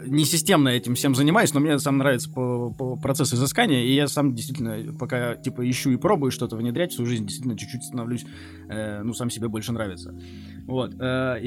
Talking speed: 195 wpm